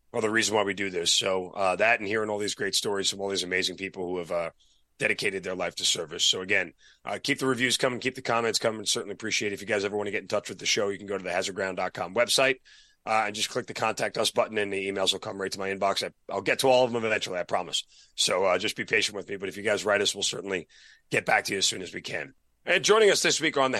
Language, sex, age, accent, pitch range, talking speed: English, male, 30-49, American, 100-125 Hz, 305 wpm